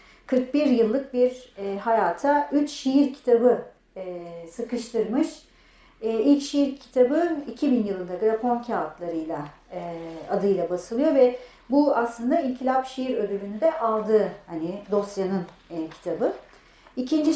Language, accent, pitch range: Turkish, native, 210-265 Hz